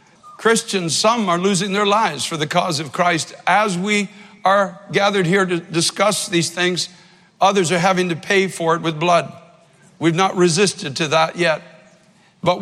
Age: 60-79